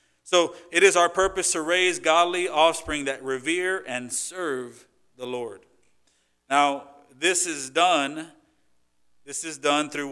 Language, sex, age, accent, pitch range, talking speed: English, male, 40-59, American, 130-165 Hz, 135 wpm